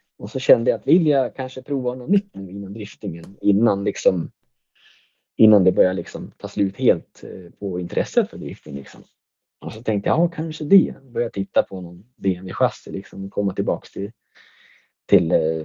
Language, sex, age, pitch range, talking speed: Swedish, male, 20-39, 100-130 Hz, 180 wpm